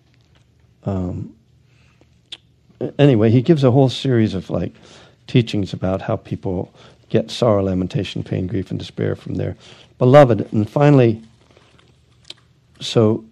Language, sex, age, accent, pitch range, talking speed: English, male, 60-79, American, 105-130 Hz, 115 wpm